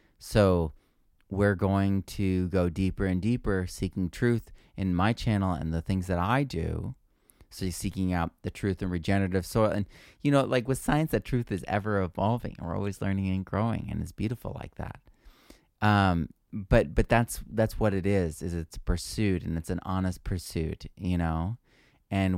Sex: male